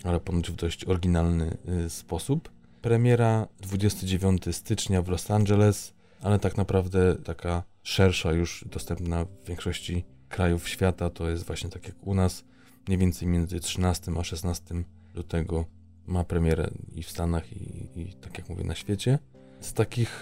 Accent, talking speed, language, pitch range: native, 150 wpm, Polish, 85-95 Hz